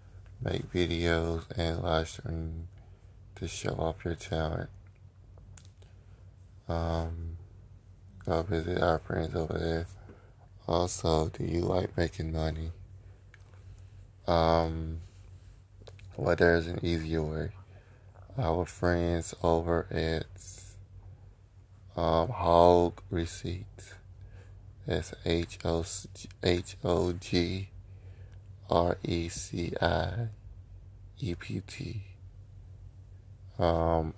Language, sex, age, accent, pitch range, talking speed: English, male, 20-39, American, 85-95 Hz, 85 wpm